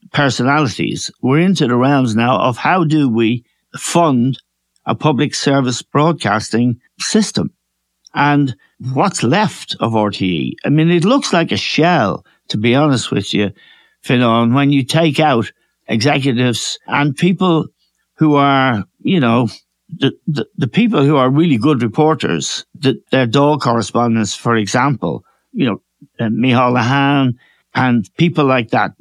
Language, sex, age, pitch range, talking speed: English, male, 60-79, 120-160 Hz, 145 wpm